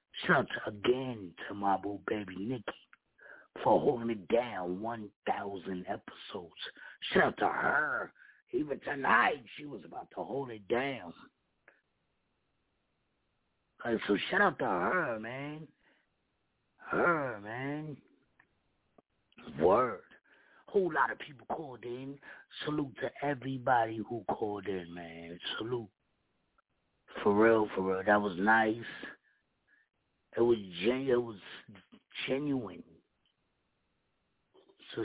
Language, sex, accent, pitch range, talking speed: English, male, American, 110-145 Hz, 100 wpm